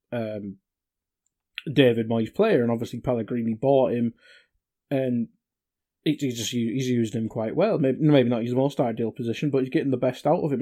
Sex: male